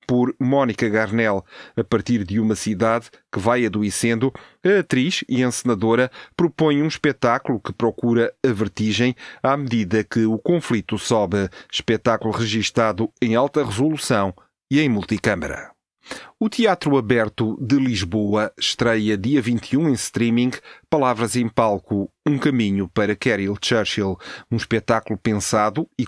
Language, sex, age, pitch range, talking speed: Portuguese, male, 30-49, 105-130 Hz, 135 wpm